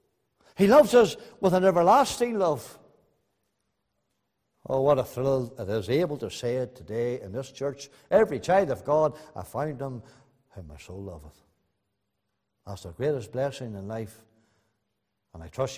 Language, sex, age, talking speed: English, male, 60-79, 155 wpm